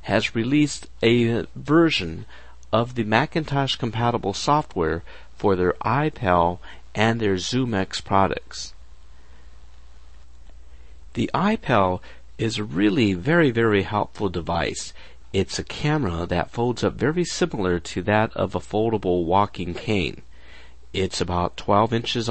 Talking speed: 120 wpm